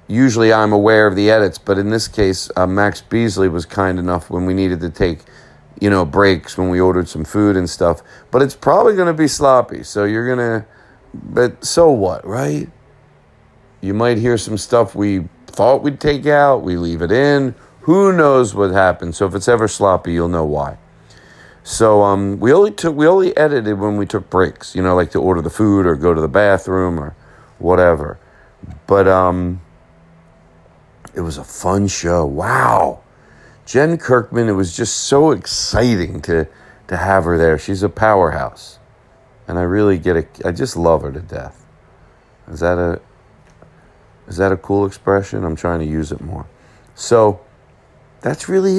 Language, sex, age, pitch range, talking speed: English, male, 40-59, 90-115 Hz, 185 wpm